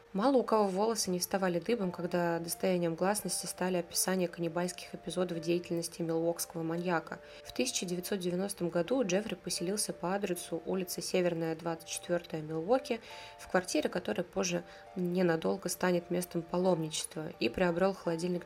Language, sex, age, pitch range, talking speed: Russian, female, 20-39, 170-190 Hz, 125 wpm